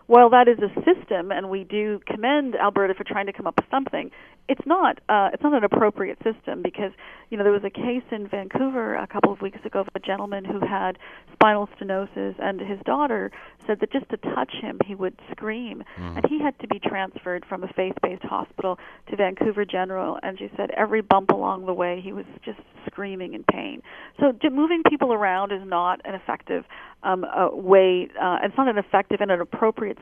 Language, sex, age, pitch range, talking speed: English, female, 40-59, 185-225 Hz, 210 wpm